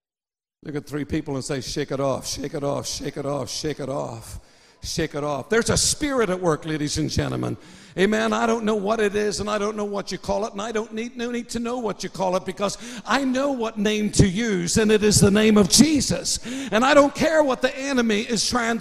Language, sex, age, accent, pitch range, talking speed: English, male, 60-79, American, 215-345 Hz, 250 wpm